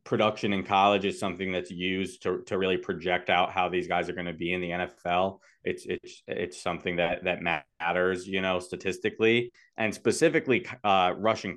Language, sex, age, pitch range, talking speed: English, male, 20-39, 90-105 Hz, 185 wpm